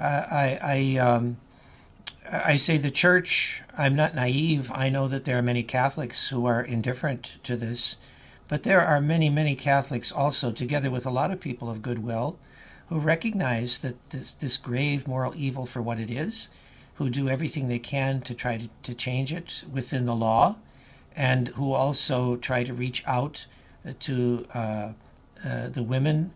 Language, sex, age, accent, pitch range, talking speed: English, male, 60-79, American, 115-135 Hz, 170 wpm